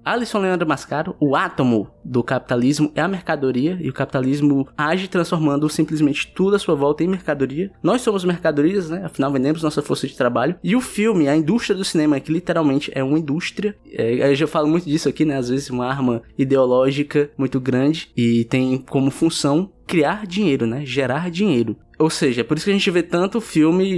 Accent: Brazilian